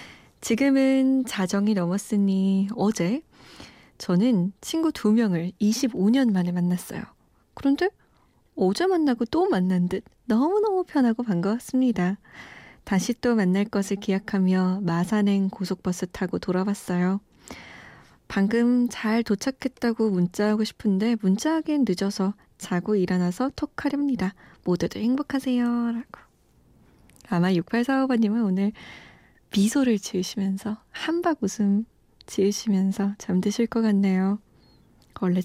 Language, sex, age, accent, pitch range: Korean, female, 20-39, native, 190-240 Hz